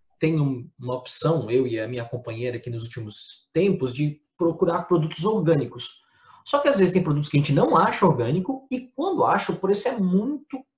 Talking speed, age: 195 wpm, 20-39